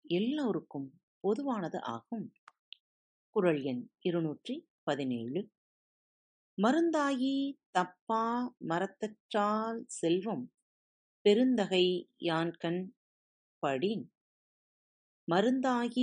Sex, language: female, Tamil